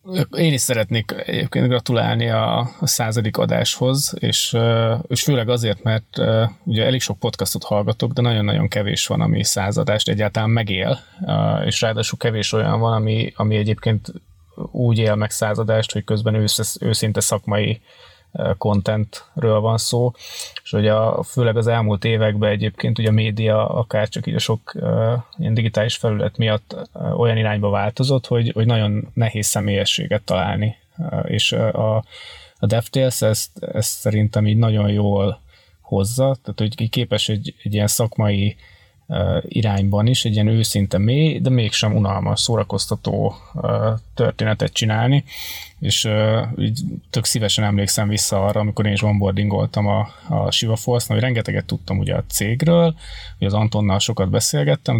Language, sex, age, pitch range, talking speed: Hungarian, male, 20-39, 105-125 Hz, 140 wpm